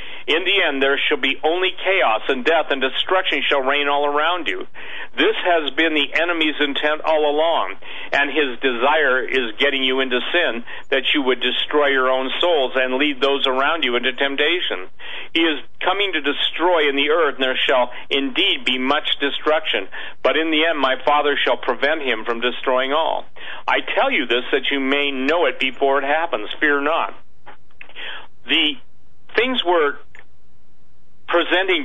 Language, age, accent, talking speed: English, 50-69, American, 175 wpm